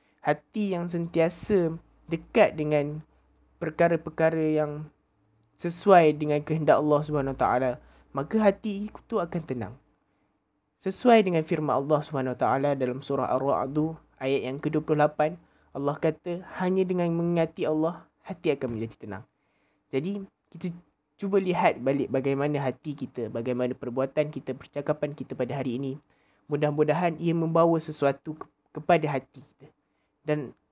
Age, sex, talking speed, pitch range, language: 20-39, male, 125 wpm, 135-160 Hz, Malay